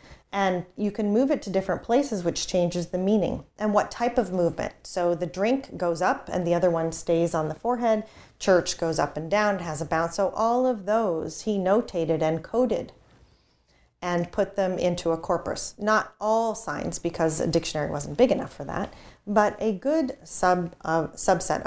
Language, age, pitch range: English, 30-49, 165-220 Hz